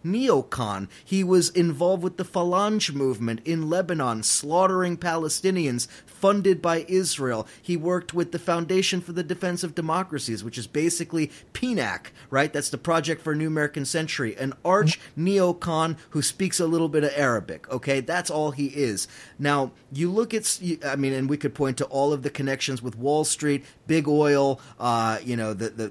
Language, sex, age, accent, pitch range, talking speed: English, male, 30-49, American, 140-185 Hz, 180 wpm